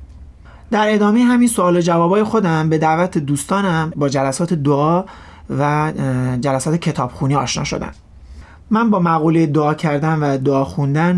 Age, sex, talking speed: 30-49, male, 140 wpm